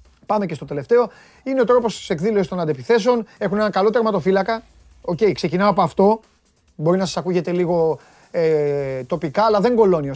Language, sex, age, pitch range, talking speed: Greek, male, 30-49, 155-220 Hz, 165 wpm